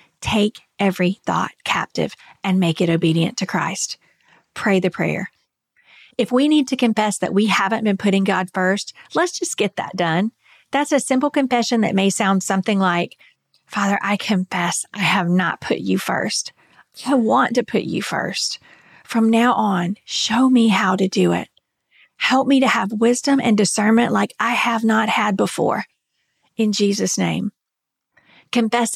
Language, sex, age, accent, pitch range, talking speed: English, female, 40-59, American, 190-240 Hz, 165 wpm